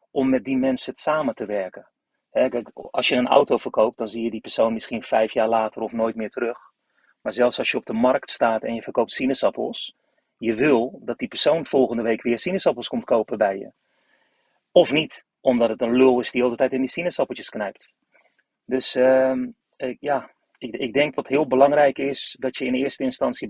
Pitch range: 120-135 Hz